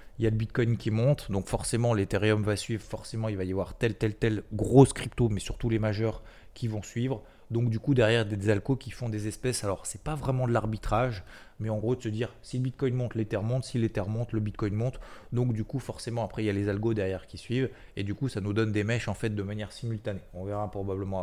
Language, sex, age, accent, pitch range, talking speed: French, male, 20-39, French, 105-120 Hz, 265 wpm